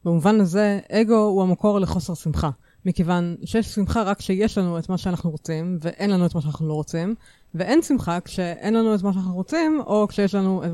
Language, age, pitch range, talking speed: Hebrew, 30-49, 165-200 Hz, 200 wpm